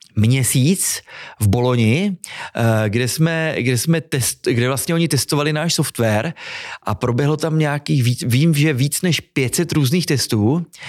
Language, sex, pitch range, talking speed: Czech, male, 115-150 Hz, 145 wpm